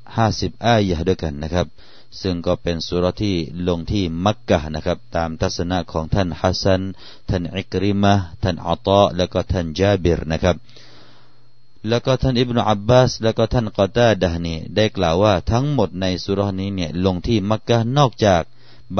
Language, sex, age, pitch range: Thai, male, 30-49, 90-110 Hz